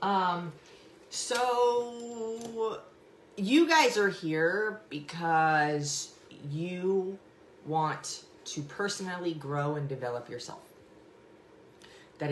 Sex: female